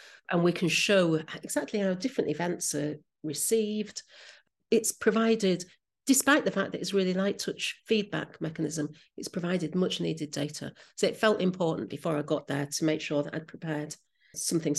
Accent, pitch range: British, 155-185 Hz